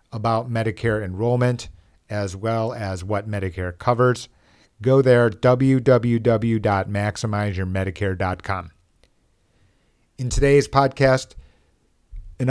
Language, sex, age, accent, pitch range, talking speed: English, male, 50-69, American, 100-125 Hz, 75 wpm